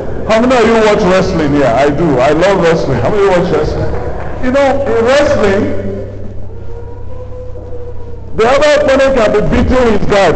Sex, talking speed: male, 175 wpm